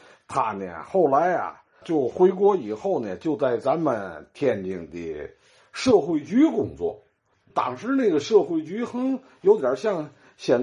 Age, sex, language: 50-69, male, Chinese